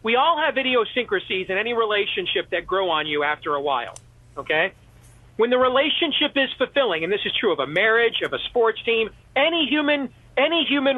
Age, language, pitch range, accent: 40-59, English, 185-260 Hz, American